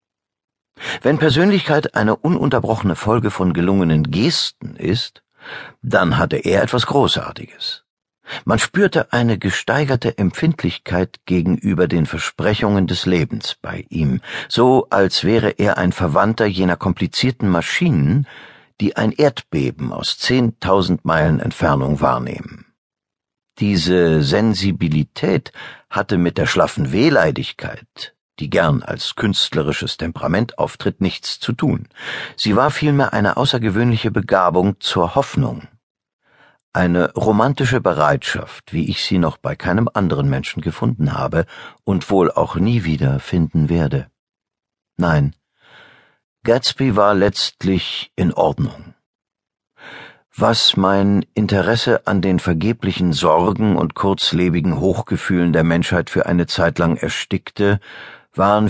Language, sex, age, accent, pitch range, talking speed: German, male, 50-69, German, 85-115 Hz, 115 wpm